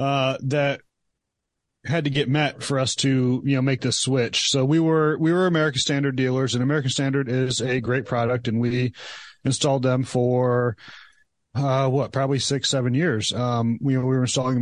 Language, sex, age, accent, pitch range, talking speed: English, male, 30-49, American, 120-135 Hz, 185 wpm